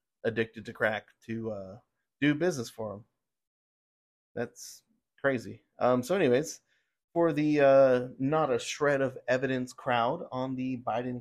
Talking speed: 140 wpm